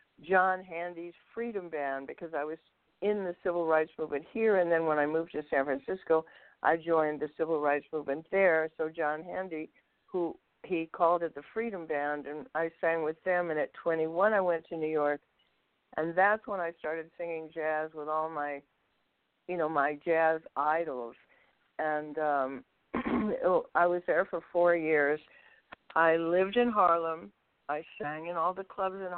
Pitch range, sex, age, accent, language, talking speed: 155-180 Hz, female, 60-79, American, English, 175 wpm